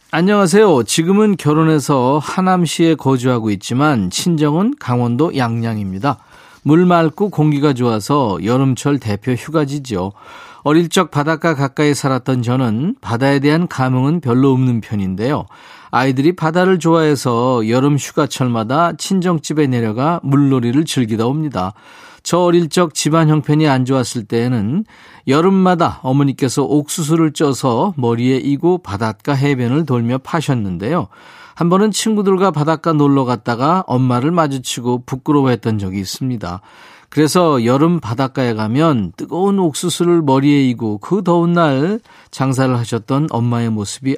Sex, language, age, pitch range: male, Korean, 40-59, 120-165 Hz